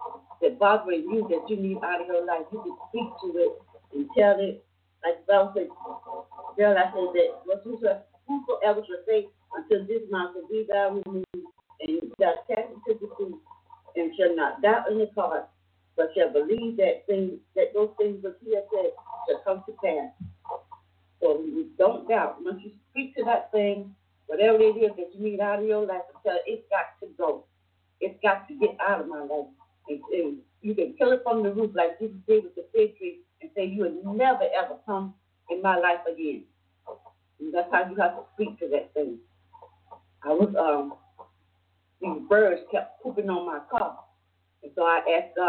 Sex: female